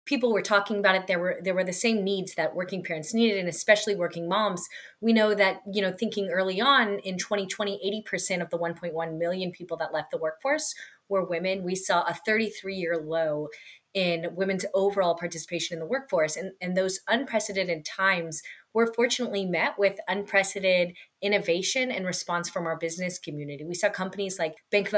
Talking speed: 185 wpm